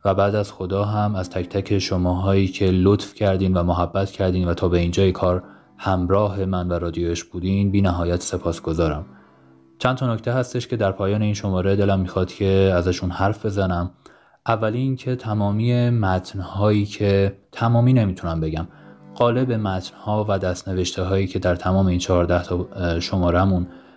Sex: male